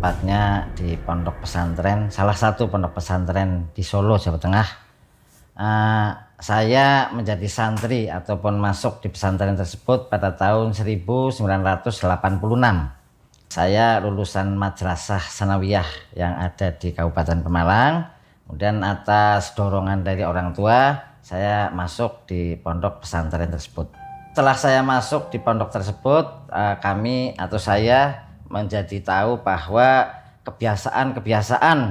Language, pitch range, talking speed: Indonesian, 95-130 Hz, 110 wpm